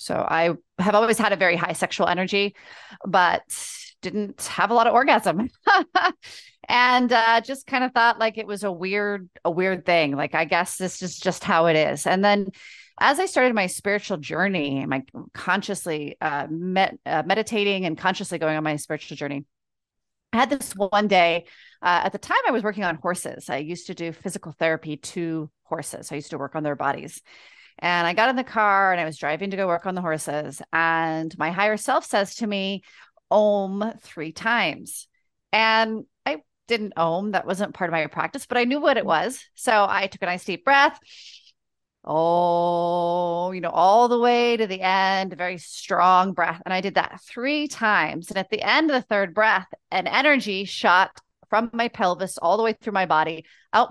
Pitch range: 170-220 Hz